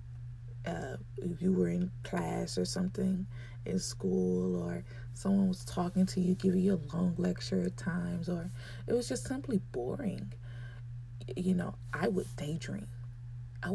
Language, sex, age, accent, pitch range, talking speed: English, female, 20-39, American, 120-170 Hz, 150 wpm